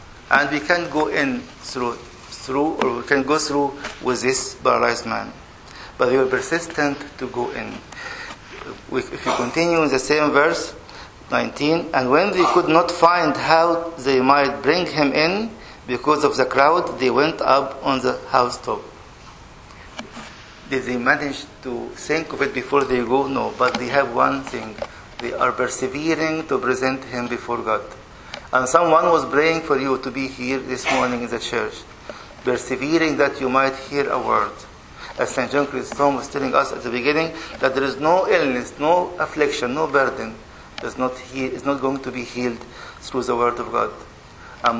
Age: 50-69